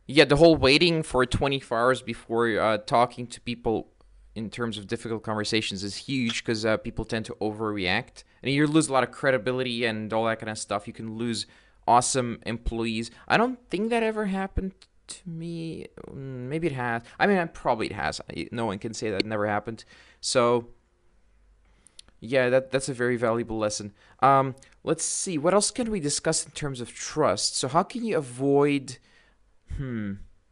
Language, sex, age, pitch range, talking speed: English, male, 20-39, 115-150 Hz, 180 wpm